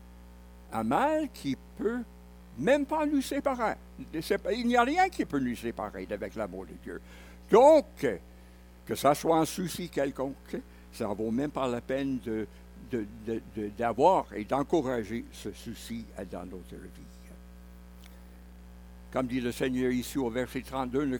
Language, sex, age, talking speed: French, male, 60-79, 155 wpm